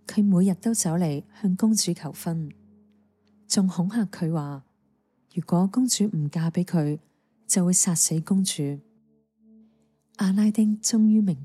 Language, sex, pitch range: Chinese, female, 140-195 Hz